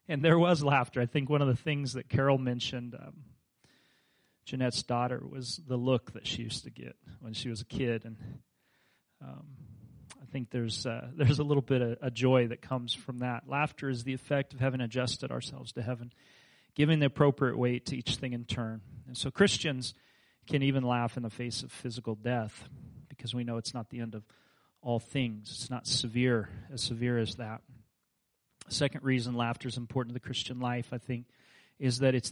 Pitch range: 120-135 Hz